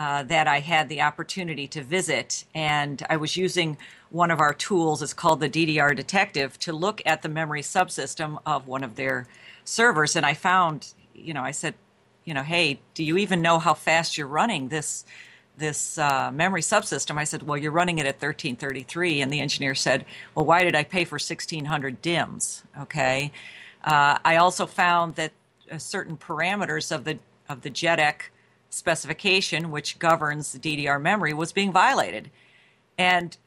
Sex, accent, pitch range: female, American, 150-180 Hz